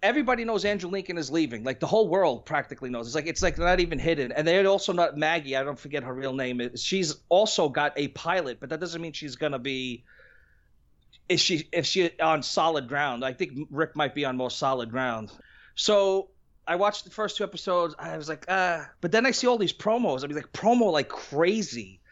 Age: 30-49